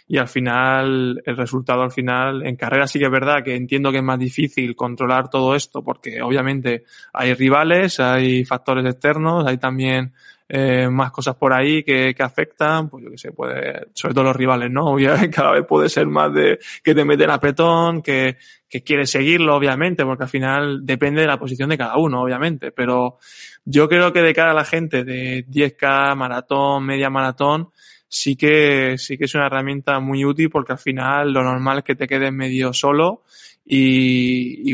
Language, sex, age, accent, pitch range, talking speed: Spanish, male, 20-39, Spanish, 130-150 Hz, 195 wpm